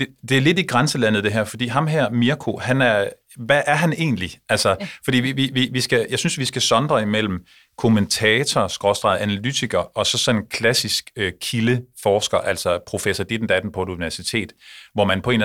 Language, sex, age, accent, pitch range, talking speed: Danish, male, 30-49, native, 95-125 Hz, 210 wpm